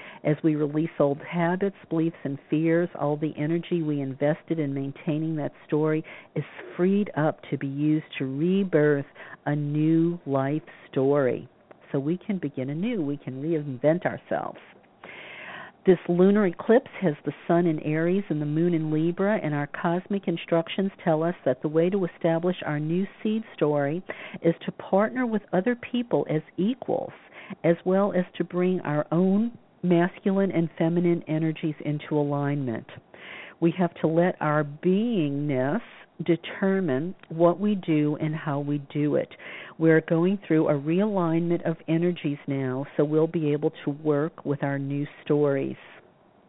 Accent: American